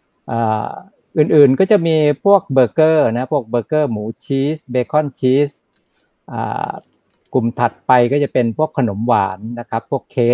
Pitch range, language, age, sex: 110-130 Hz, Thai, 60-79, male